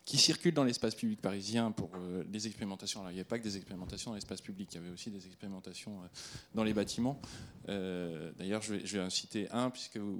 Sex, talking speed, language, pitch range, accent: male, 245 wpm, French, 95-115 Hz, French